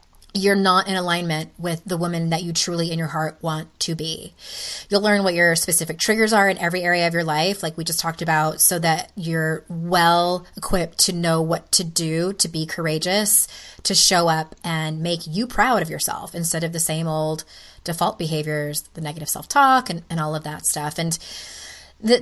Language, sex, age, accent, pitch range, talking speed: English, female, 20-39, American, 160-195 Hz, 200 wpm